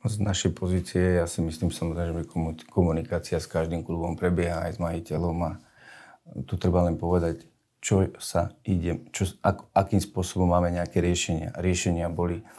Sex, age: male, 40-59